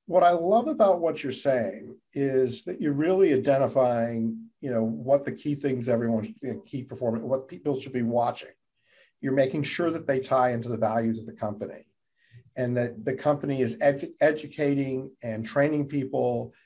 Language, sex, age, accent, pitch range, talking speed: English, male, 50-69, American, 115-140 Hz, 185 wpm